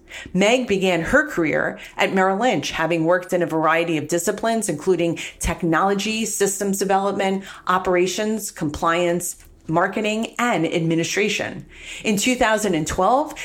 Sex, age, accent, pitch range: female, 40-59, American, 170-220 Hz